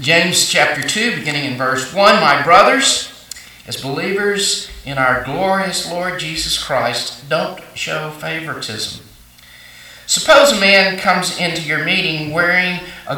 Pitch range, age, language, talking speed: 125-170 Hz, 50-69, English, 130 wpm